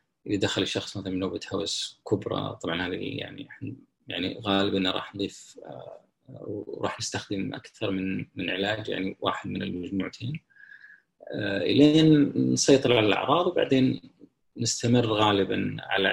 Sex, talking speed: male, 120 wpm